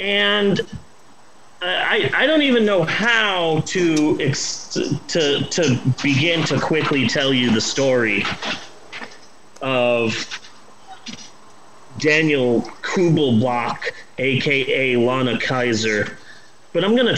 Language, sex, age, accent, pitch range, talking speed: English, male, 30-49, American, 140-210 Hz, 100 wpm